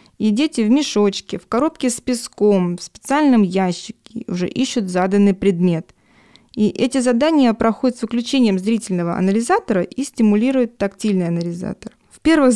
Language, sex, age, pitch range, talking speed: Russian, female, 20-39, 195-240 Hz, 140 wpm